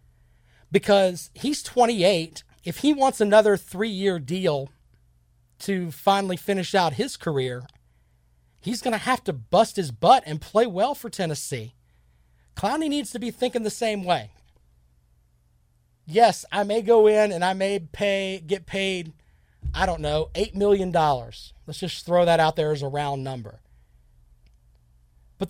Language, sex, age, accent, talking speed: English, male, 40-59, American, 150 wpm